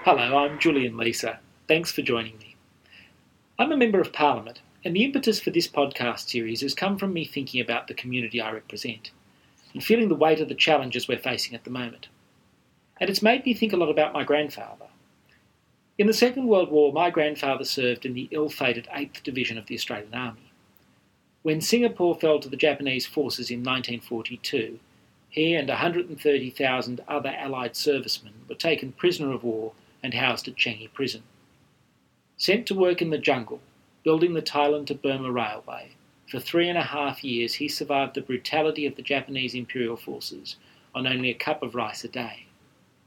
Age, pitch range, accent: 40-59, 125-160 Hz, Australian